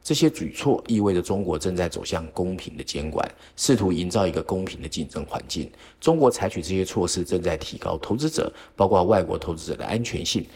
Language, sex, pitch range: Chinese, male, 90-115 Hz